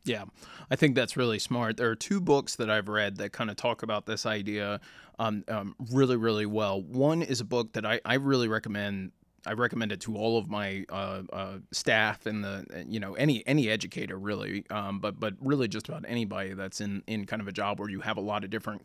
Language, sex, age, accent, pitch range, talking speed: English, male, 20-39, American, 105-125 Hz, 230 wpm